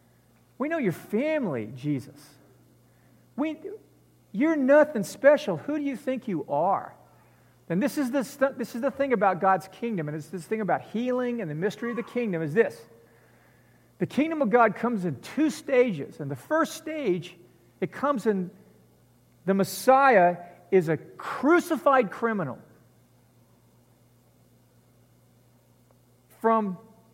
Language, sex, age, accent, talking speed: English, male, 50-69, American, 140 wpm